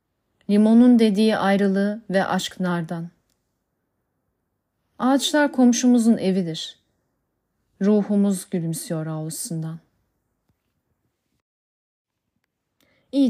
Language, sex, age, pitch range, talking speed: Turkish, female, 30-49, 175-235 Hz, 60 wpm